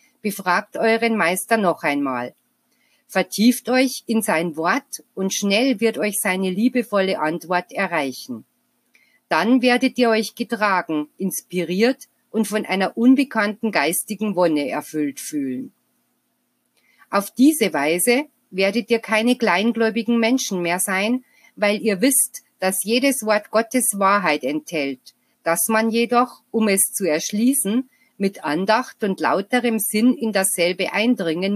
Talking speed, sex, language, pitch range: 125 wpm, female, German, 190-240 Hz